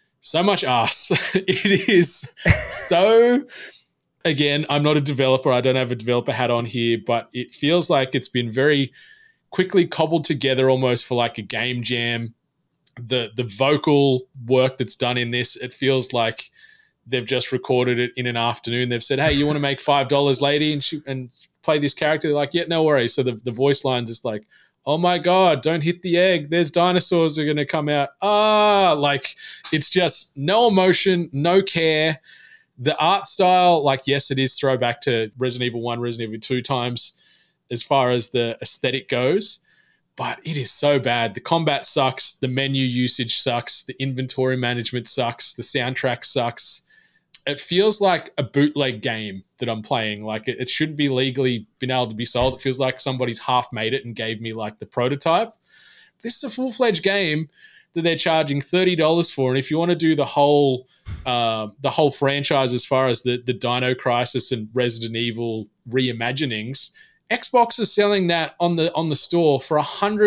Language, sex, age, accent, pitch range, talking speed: English, male, 20-39, Australian, 125-165 Hz, 190 wpm